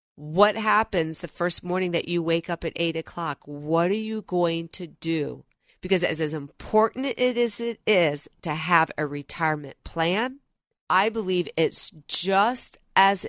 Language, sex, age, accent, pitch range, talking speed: English, female, 40-59, American, 170-225 Hz, 160 wpm